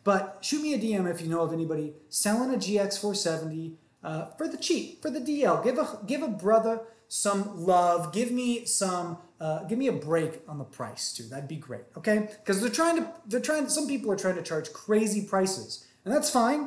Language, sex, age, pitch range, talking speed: English, male, 30-49, 170-225 Hz, 215 wpm